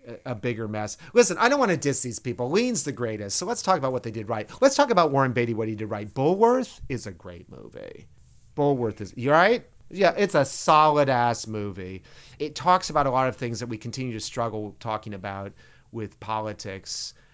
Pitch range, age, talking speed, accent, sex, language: 100-140 Hz, 40-59, 215 wpm, American, male, English